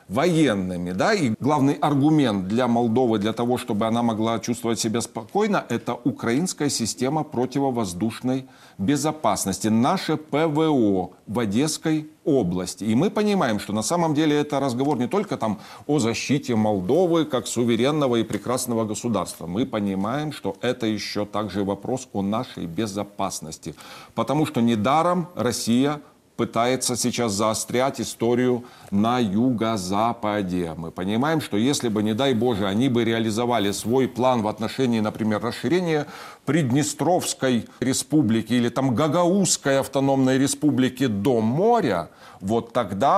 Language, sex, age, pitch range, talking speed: Russian, male, 40-59, 110-140 Hz, 130 wpm